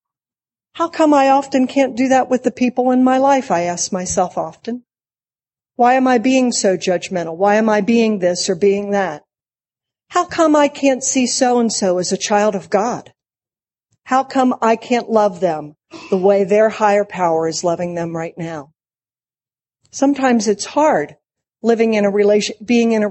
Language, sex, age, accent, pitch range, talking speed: English, female, 50-69, American, 190-260 Hz, 180 wpm